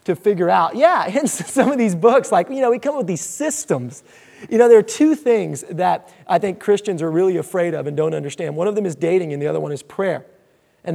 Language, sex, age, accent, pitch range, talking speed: English, male, 20-39, American, 180-245 Hz, 260 wpm